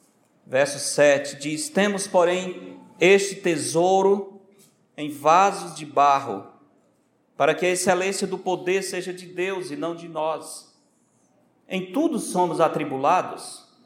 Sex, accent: male, Brazilian